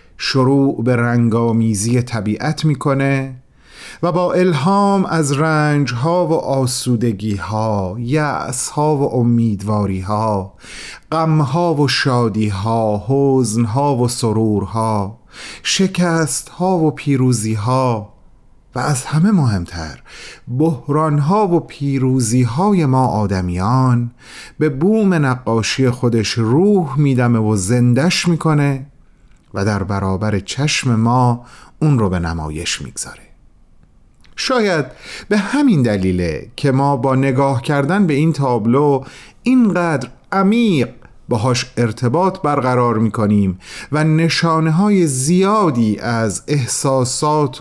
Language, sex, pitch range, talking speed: Persian, male, 110-155 Hz, 95 wpm